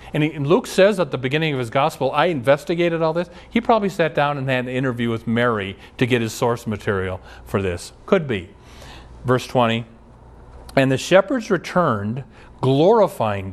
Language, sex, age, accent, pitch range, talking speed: English, male, 40-59, American, 110-165 Hz, 175 wpm